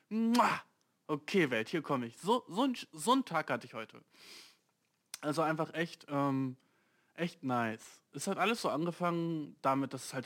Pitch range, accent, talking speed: 135-190 Hz, German, 145 wpm